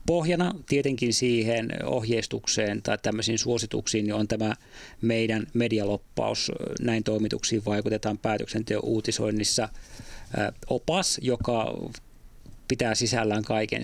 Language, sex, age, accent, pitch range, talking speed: Finnish, male, 30-49, native, 110-130 Hz, 95 wpm